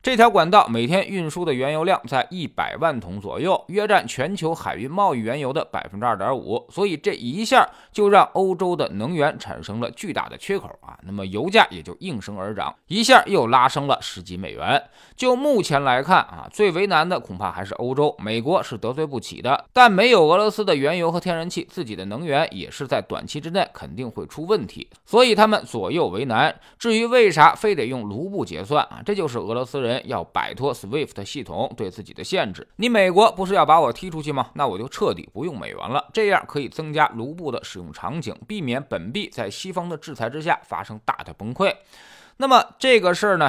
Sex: male